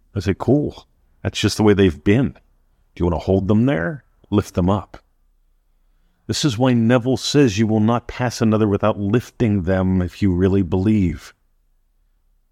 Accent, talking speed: American, 175 wpm